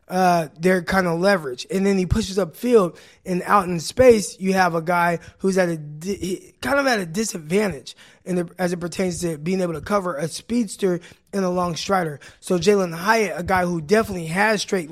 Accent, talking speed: American, 210 wpm